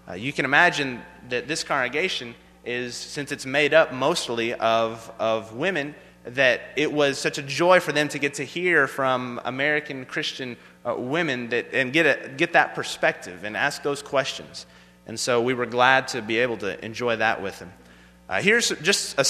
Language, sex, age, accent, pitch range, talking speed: English, male, 30-49, American, 125-165 Hz, 190 wpm